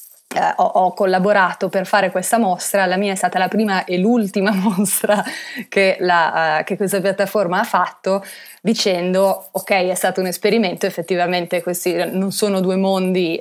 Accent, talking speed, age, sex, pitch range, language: native, 160 wpm, 20-39, female, 175-190 Hz, Italian